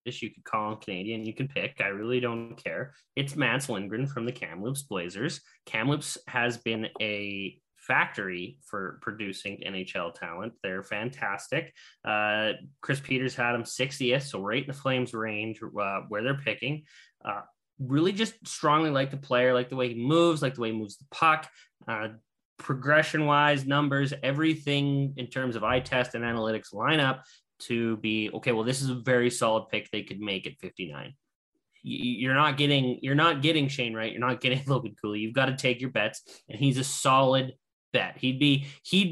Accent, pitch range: American, 115-145 Hz